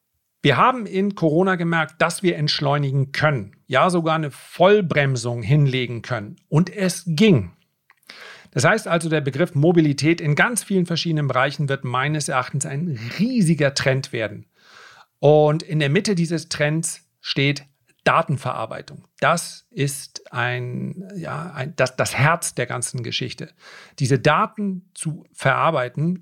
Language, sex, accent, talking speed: German, male, German, 130 wpm